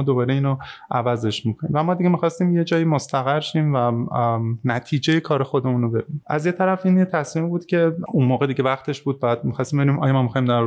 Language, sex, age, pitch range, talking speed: Persian, male, 20-39, 120-155 Hz, 210 wpm